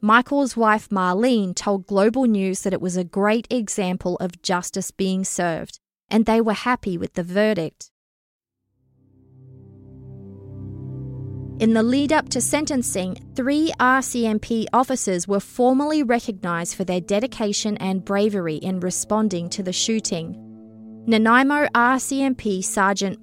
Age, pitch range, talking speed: 20-39, 180-235 Hz, 120 wpm